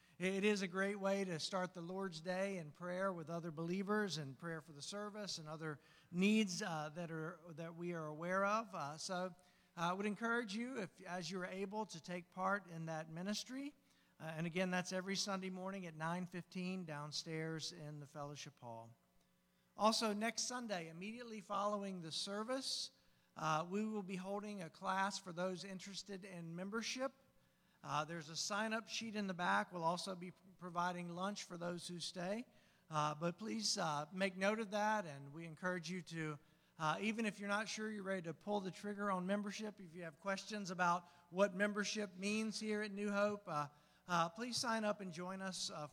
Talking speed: 190 wpm